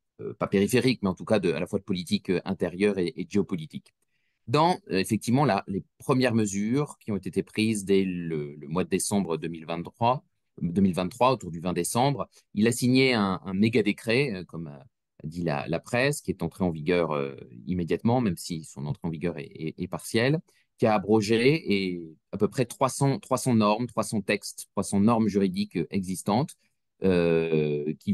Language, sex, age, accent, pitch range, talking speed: French, male, 30-49, French, 80-115 Hz, 180 wpm